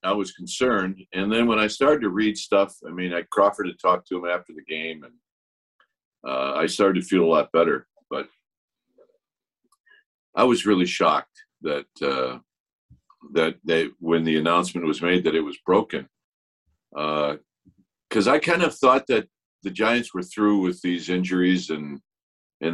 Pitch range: 85-110 Hz